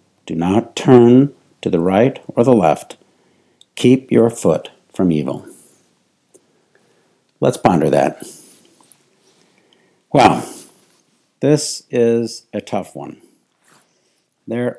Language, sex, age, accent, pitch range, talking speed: English, male, 60-79, American, 105-130 Hz, 95 wpm